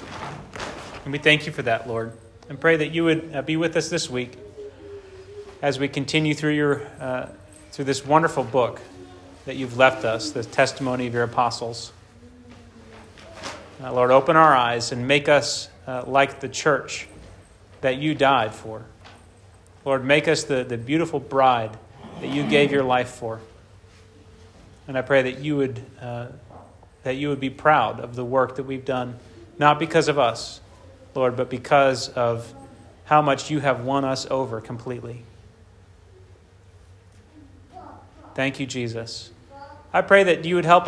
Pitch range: 105-140 Hz